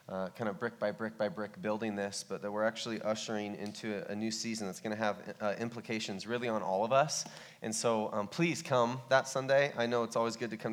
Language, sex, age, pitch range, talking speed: English, male, 20-39, 110-140 Hz, 250 wpm